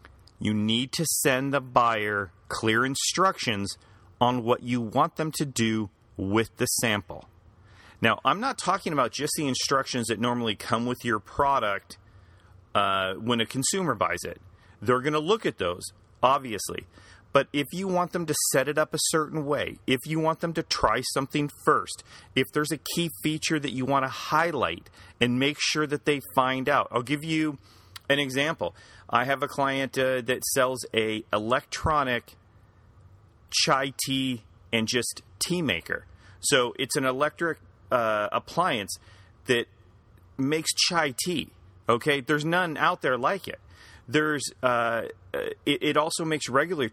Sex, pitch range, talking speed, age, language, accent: male, 105-145 Hz, 160 wpm, 40-59, English, American